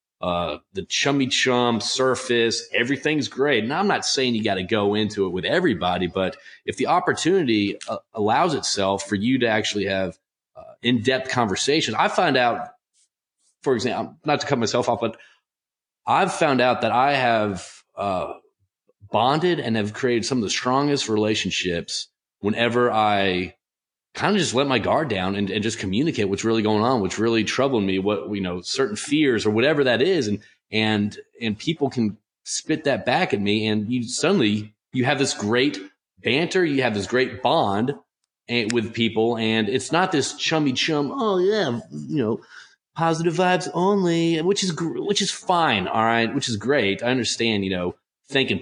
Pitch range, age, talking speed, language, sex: 100-130 Hz, 30-49, 180 wpm, English, male